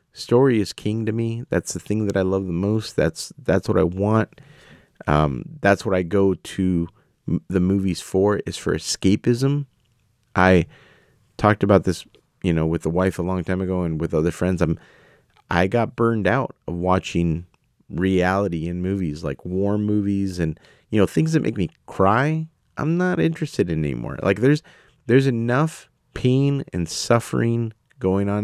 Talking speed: 175 wpm